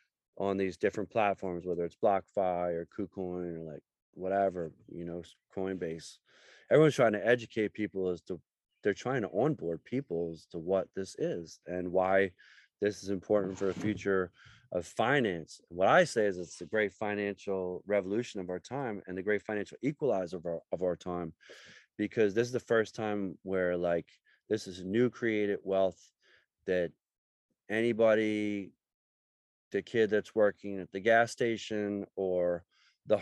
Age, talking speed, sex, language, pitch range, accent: 30-49, 160 wpm, male, English, 95-120 Hz, American